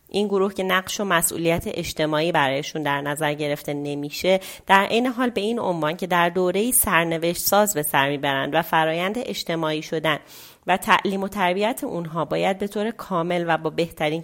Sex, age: female, 30-49